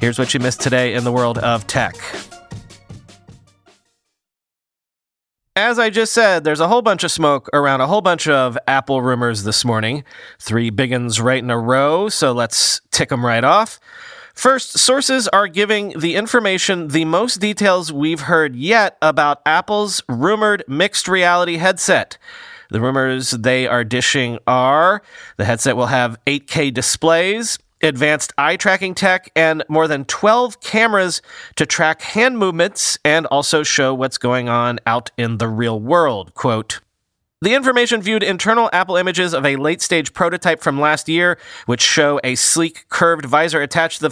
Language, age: English, 30-49